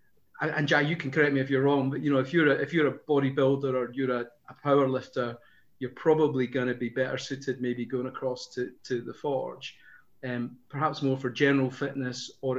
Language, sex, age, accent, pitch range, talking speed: English, male, 30-49, British, 125-140 Hz, 225 wpm